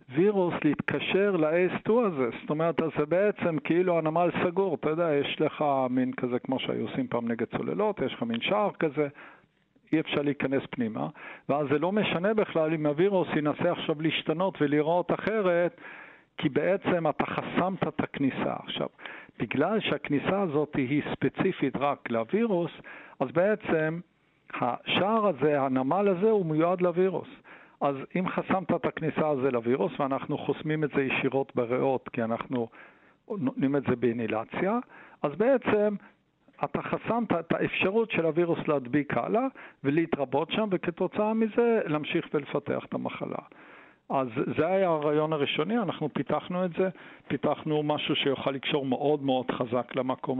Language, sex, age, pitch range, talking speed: Hebrew, male, 60-79, 135-185 Hz, 145 wpm